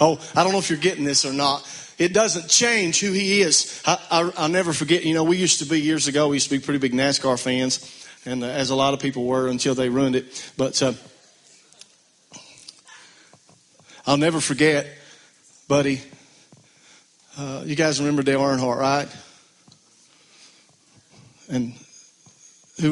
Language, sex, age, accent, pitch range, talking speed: English, male, 40-59, American, 130-155 Hz, 160 wpm